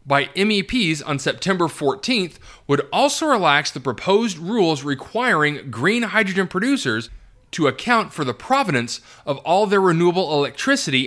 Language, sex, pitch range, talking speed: English, male, 130-205 Hz, 135 wpm